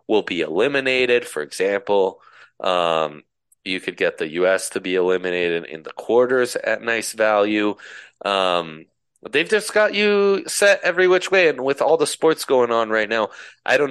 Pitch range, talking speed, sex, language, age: 100-130 Hz, 175 wpm, male, English, 30-49